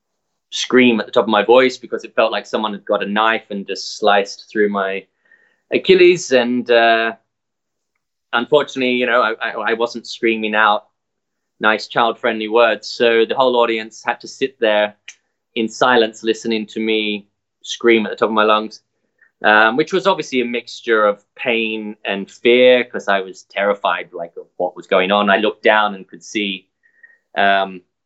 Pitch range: 105-125 Hz